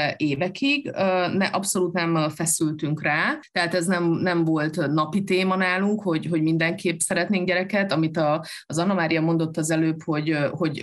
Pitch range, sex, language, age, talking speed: 155-180 Hz, female, Hungarian, 30-49, 150 wpm